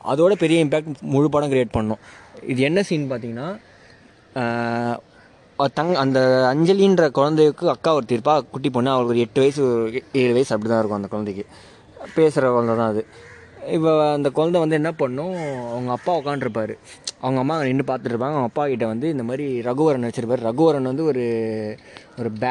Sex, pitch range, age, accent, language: male, 120-150 Hz, 20-39, Indian, English